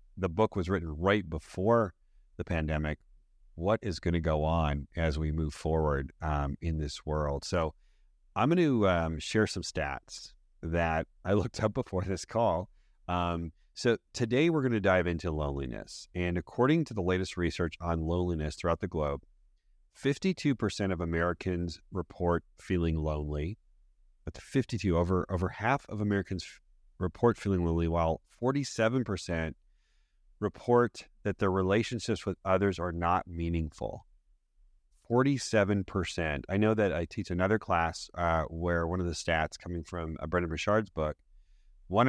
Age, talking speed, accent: 30-49, 155 wpm, American